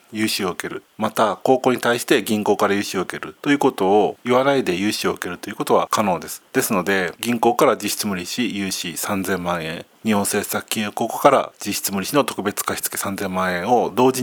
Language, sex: Japanese, male